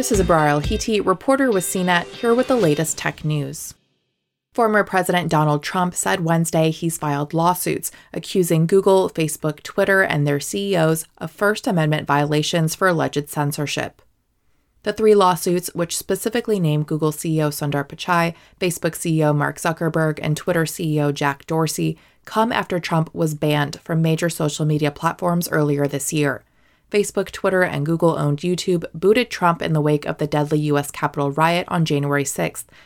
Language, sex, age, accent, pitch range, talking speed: English, female, 20-39, American, 150-185 Hz, 155 wpm